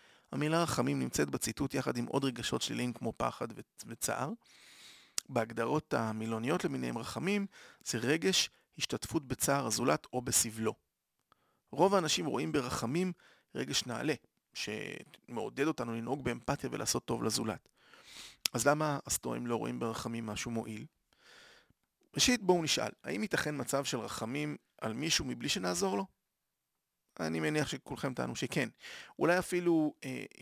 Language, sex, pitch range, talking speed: Hebrew, male, 115-145 Hz, 130 wpm